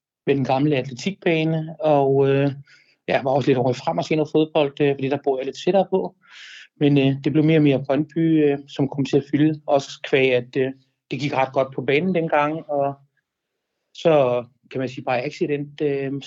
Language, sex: Danish, male